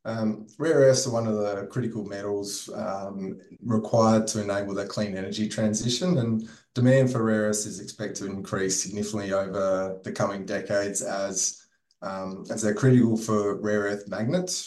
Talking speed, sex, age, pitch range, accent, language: 160 wpm, male, 20-39, 100-110 Hz, Australian, English